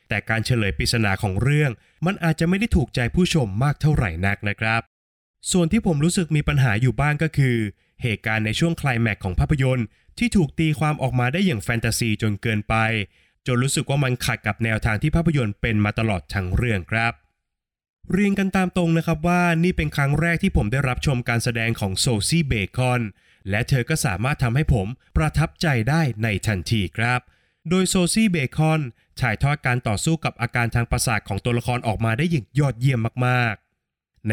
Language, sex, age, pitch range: Thai, male, 20-39, 110-155 Hz